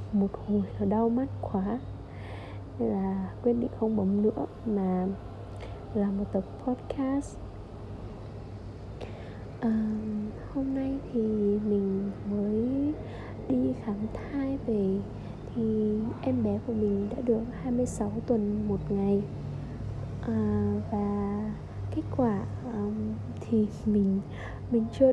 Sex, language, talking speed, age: female, Vietnamese, 110 wpm, 20-39